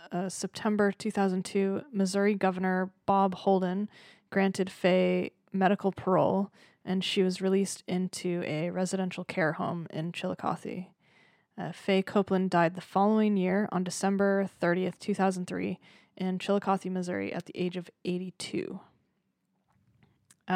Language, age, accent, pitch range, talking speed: English, 20-39, American, 175-195 Hz, 120 wpm